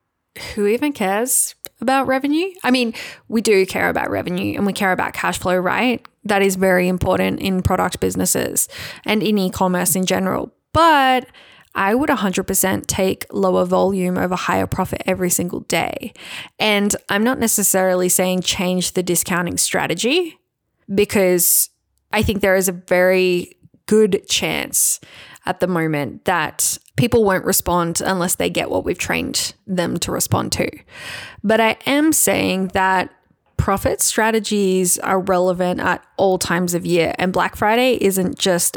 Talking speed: 155 wpm